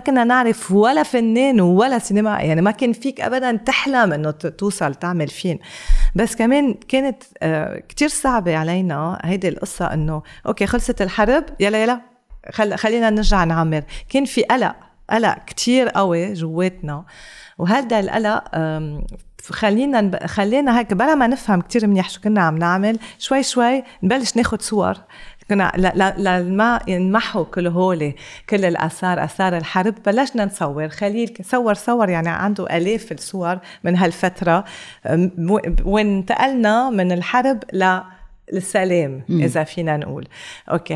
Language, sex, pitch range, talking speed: Arabic, female, 175-235 Hz, 130 wpm